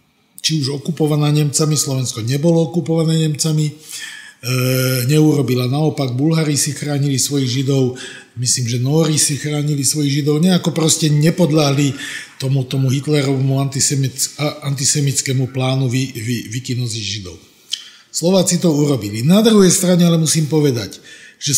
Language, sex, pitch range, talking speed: Slovak, male, 135-160 Hz, 130 wpm